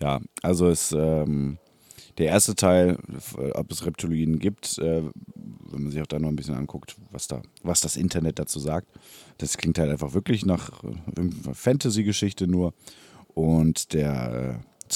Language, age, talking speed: German, 30-49, 160 wpm